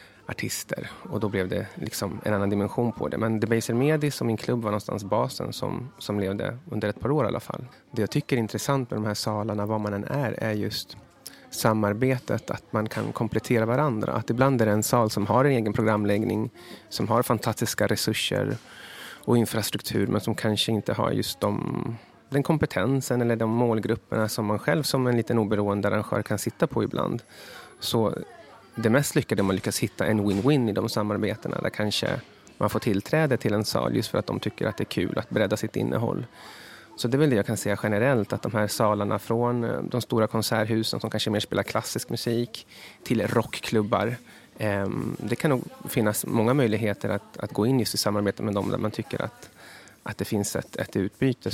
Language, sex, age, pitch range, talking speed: Swedish, male, 30-49, 105-120 Hz, 205 wpm